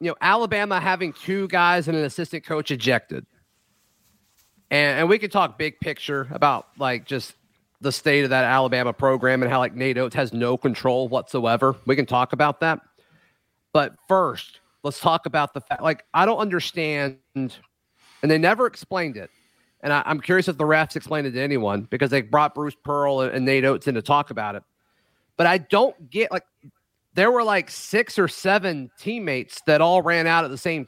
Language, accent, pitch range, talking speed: English, American, 135-190 Hz, 195 wpm